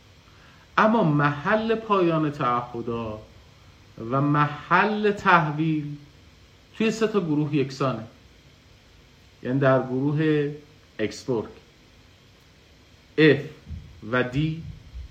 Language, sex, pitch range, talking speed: Persian, male, 95-150 Hz, 70 wpm